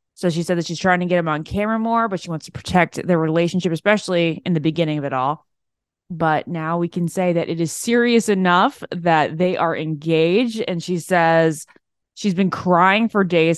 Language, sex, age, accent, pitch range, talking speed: English, female, 20-39, American, 160-200 Hz, 210 wpm